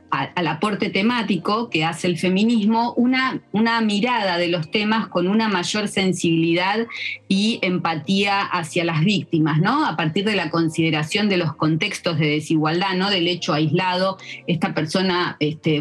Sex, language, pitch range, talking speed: female, Spanish, 160-200 Hz, 150 wpm